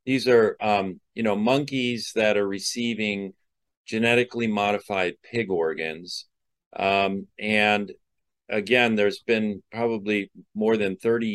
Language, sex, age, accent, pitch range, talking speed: English, male, 40-59, American, 95-120 Hz, 115 wpm